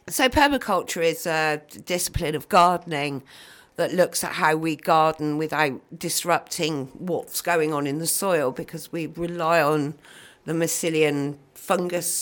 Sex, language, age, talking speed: female, English, 50-69, 135 wpm